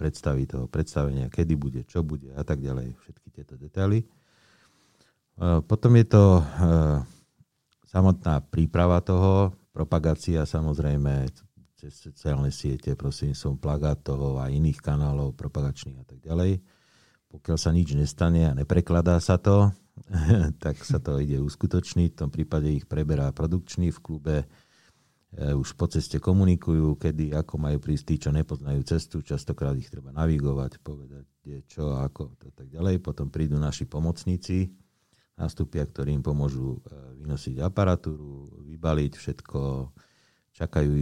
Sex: male